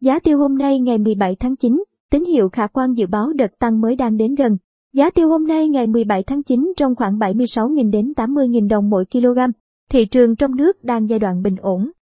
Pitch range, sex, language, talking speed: 220-265 Hz, male, Vietnamese, 225 wpm